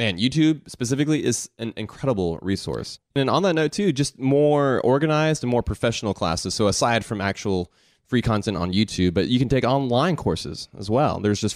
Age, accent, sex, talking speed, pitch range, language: 20-39, American, male, 190 wpm, 100-130 Hz, English